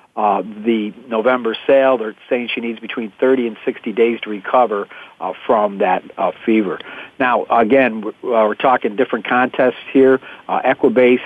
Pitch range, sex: 110-130 Hz, male